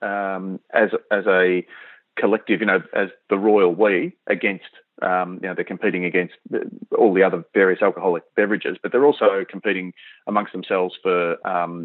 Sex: male